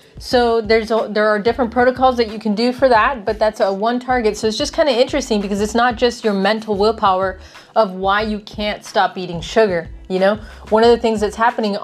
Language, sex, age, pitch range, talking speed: English, female, 20-39, 195-235 Hz, 235 wpm